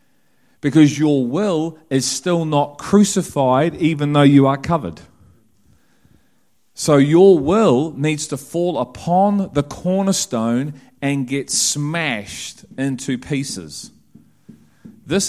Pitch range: 130-170 Hz